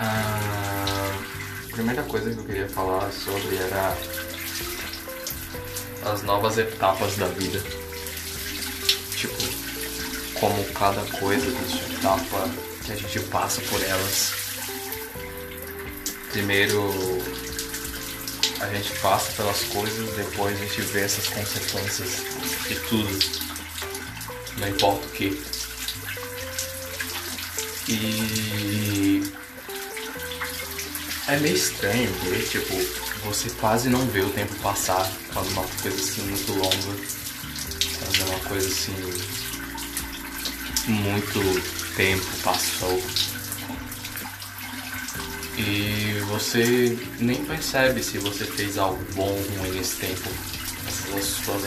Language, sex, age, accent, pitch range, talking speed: Portuguese, male, 20-39, Brazilian, 90-105 Hz, 95 wpm